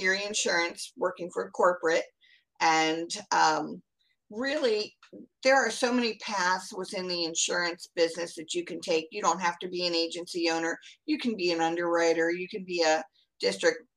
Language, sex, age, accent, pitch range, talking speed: English, female, 50-69, American, 170-220 Hz, 165 wpm